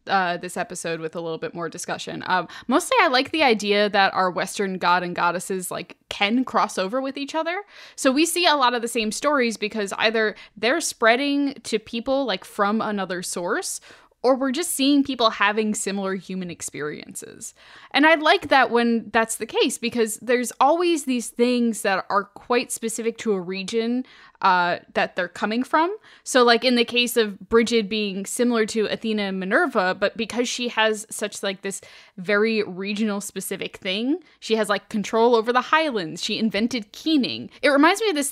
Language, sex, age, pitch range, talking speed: English, female, 10-29, 195-245 Hz, 190 wpm